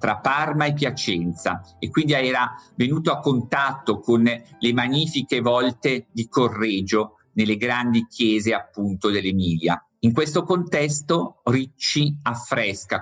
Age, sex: 50-69, male